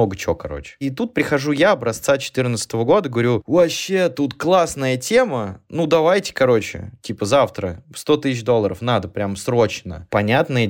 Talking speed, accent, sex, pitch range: 150 wpm, native, male, 110-140 Hz